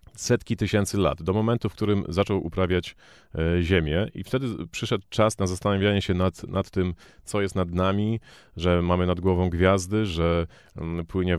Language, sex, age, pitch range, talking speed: Polish, male, 30-49, 85-100 Hz, 165 wpm